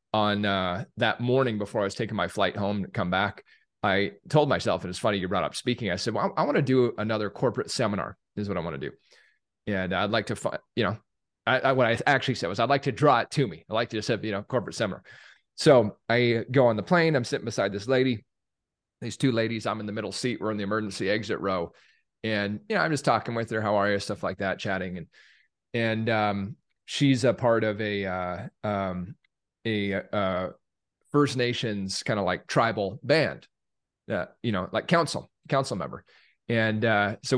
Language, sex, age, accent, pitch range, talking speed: English, male, 30-49, American, 105-135 Hz, 225 wpm